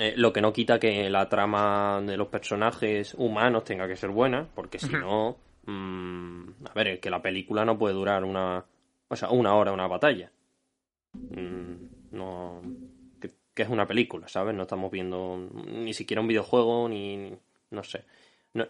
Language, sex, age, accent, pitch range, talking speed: Spanish, male, 20-39, Spanish, 100-115 Hz, 180 wpm